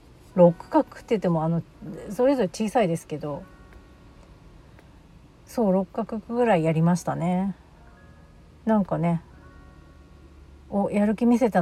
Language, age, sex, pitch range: Japanese, 40-59, female, 165-235 Hz